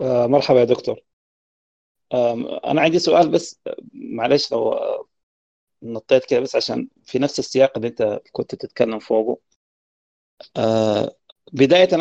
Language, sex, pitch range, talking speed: Arabic, male, 110-140 Hz, 110 wpm